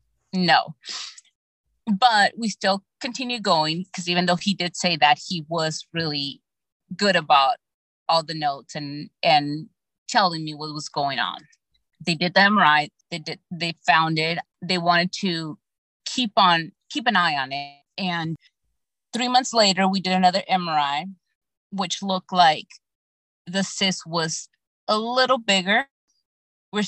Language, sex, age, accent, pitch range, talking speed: English, female, 30-49, American, 155-195 Hz, 145 wpm